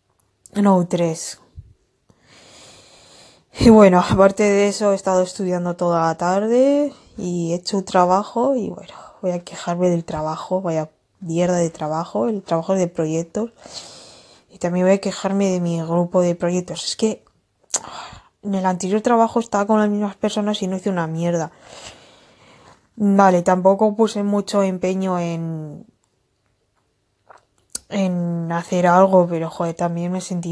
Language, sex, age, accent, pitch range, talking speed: English, female, 10-29, Spanish, 170-195 Hz, 145 wpm